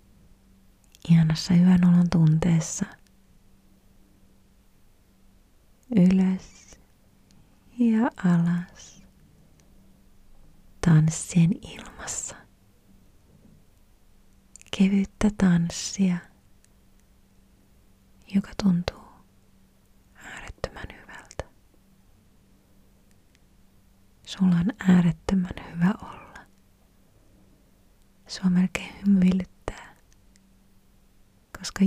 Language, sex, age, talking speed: Finnish, female, 30-49, 45 wpm